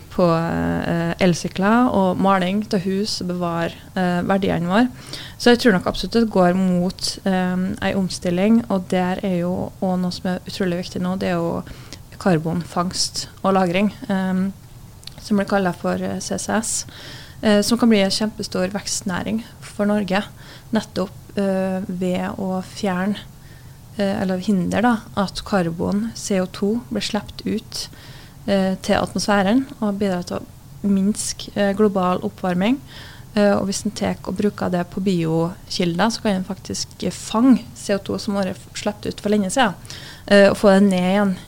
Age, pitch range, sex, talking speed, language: 20-39, 180-205 Hz, female, 155 wpm, English